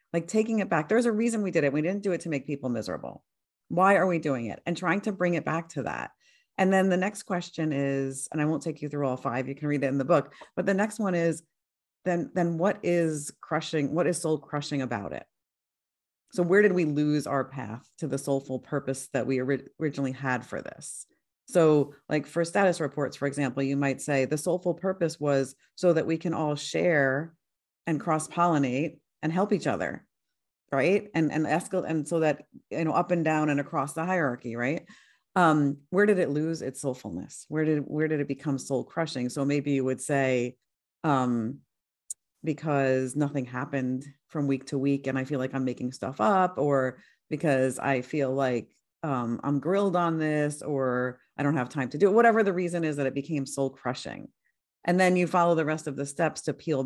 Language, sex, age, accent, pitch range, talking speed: English, female, 40-59, American, 135-170 Hz, 215 wpm